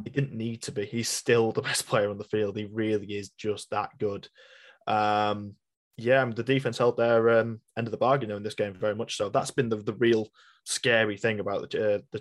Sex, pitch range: male, 105-125 Hz